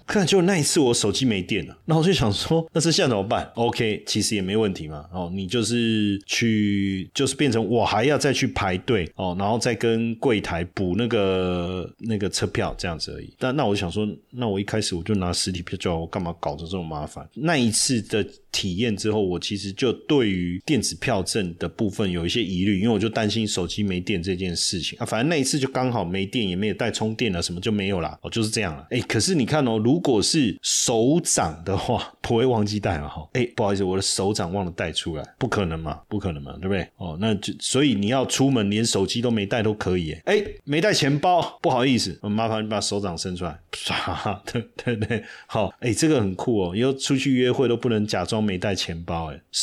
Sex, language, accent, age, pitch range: male, Chinese, native, 30-49, 95-120 Hz